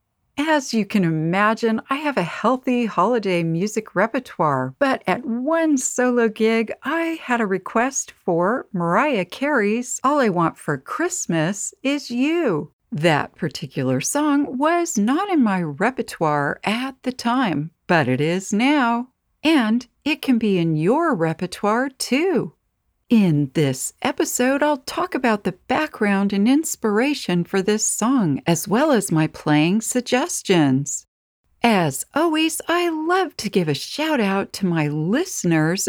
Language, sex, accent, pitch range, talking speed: English, female, American, 175-285 Hz, 140 wpm